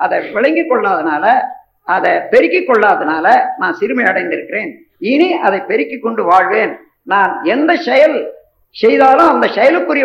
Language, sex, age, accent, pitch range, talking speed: Tamil, female, 50-69, native, 265-420 Hz, 115 wpm